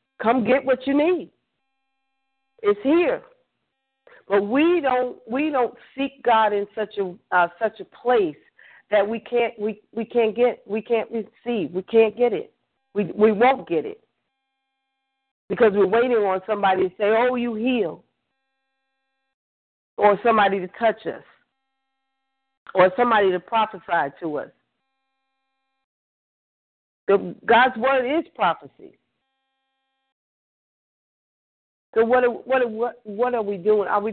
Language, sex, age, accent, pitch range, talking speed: English, female, 40-59, American, 200-265 Hz, 135 wpm